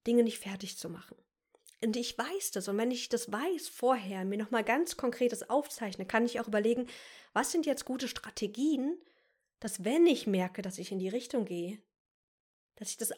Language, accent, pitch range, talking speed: German, German, 195-250 Hz, 190 wpm